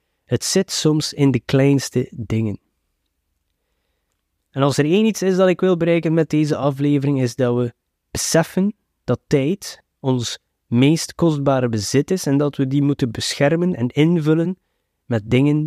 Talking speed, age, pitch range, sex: 155 wpm, 20-39, 110-145 Hz, male